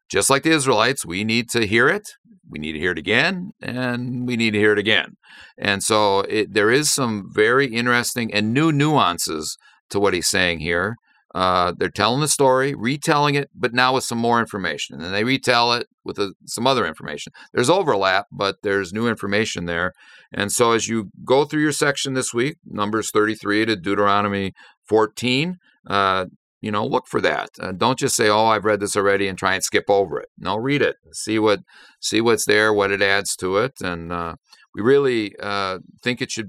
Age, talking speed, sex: 50-69, 200 wpm, male